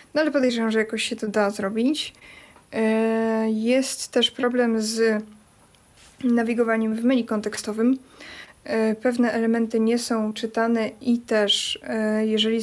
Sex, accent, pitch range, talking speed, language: female, native, 215-240 Hz, 120 wpm, Polish